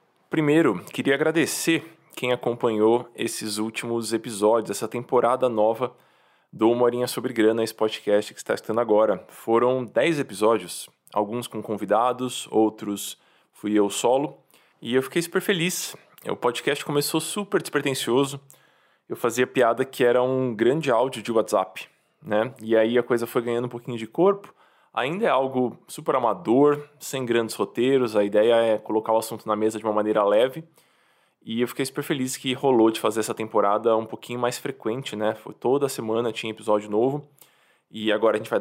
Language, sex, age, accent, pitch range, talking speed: Portuguese, male, 20-39, Brazilian, 110-135 Hz, 170 wpm